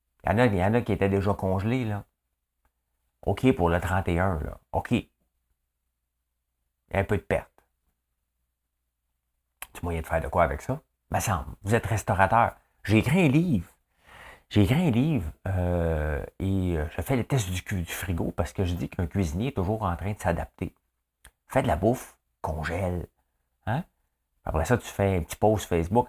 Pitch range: 80-105 Hz